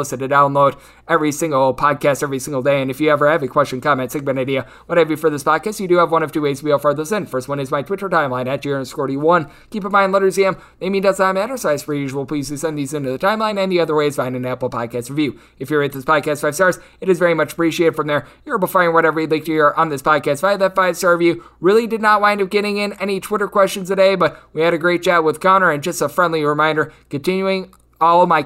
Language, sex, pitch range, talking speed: English, male, 145-180 Hz, 280 wpm